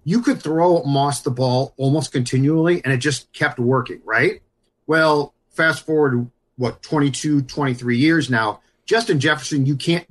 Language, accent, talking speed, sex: English, American, 155 wpm, male